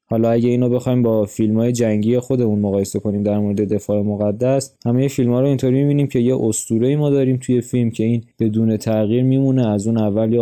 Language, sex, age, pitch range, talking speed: Persian, male, 20-39, 110-125 Hz, 200 wpm